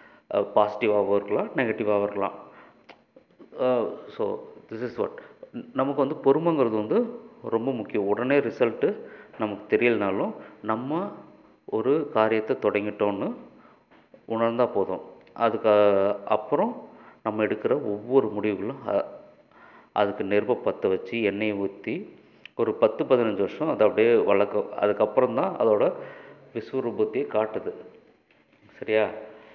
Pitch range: 105-135 Hz